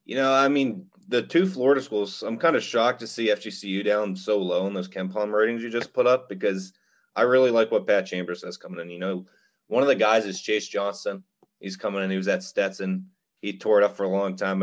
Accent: American